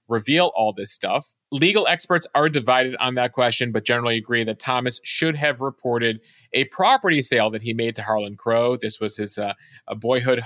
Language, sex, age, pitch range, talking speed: English, male, 30-49, 115-140 Hz, 195 wpm